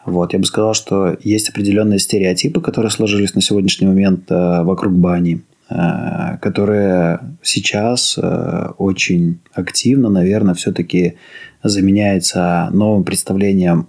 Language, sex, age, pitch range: Russian, male, 20-39, 90-100 Hz